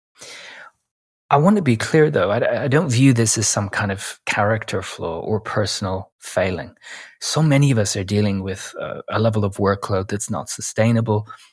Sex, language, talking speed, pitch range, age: male, English, 180 wpm, 100-115 Hz, 30-49